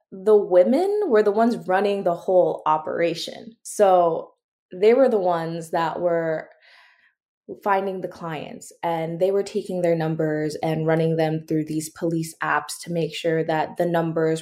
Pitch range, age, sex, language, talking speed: 170-230 Hz, 20-39, female, English, 160 wpm